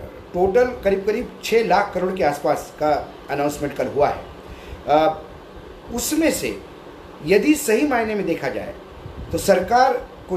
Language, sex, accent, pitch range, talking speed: Hindi, male, native, 145-175 Hz, 140 wpm